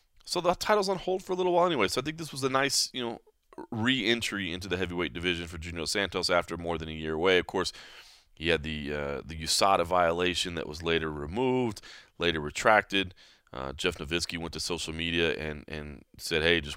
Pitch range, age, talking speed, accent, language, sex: 85-125 Hz, 30-49, 215 wpm, American, English, male